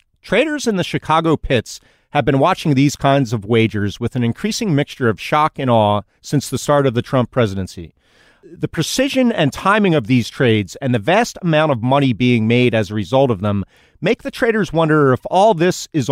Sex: male